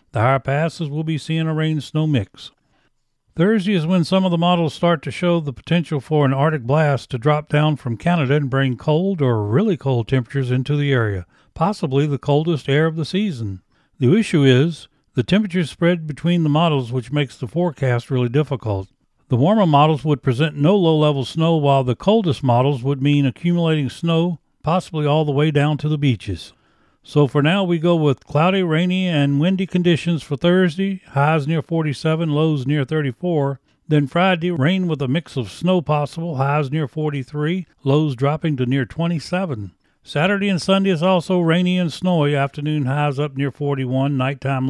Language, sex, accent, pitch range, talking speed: English, male, American, 135-170 Hz, 185 wpm